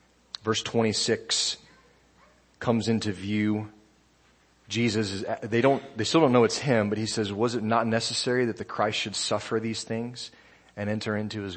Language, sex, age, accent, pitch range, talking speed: English, male, 40-59, American, 90-120 Hz, 170 wpm